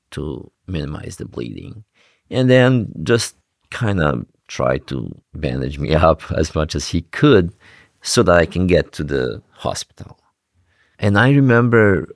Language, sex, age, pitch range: English, male, 50-69, 80-105 Hz